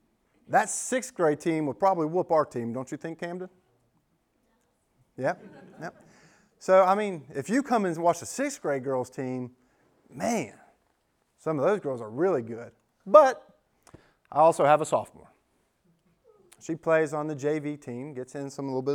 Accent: American